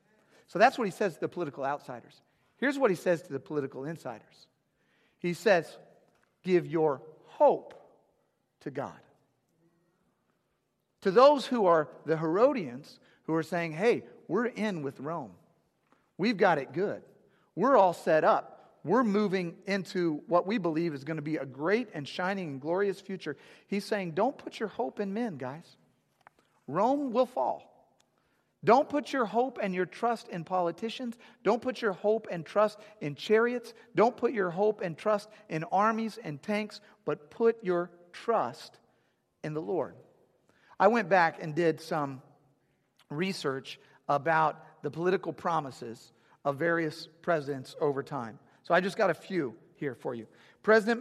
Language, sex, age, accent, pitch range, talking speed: English, male, 50-69, American, 155-215 Hz, 160 wpm